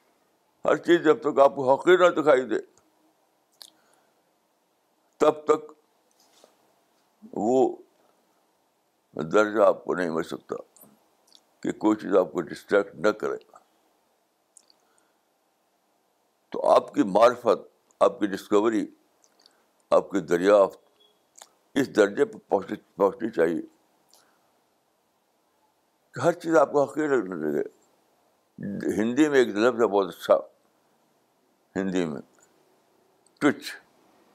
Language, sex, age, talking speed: Urdu, male, 60-79, 95 wpm